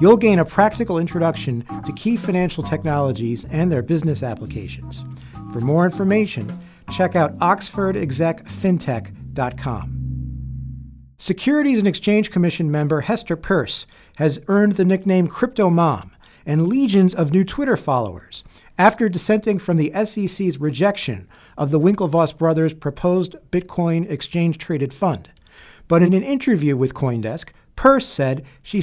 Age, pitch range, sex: 50-69, 125-185 Hz, male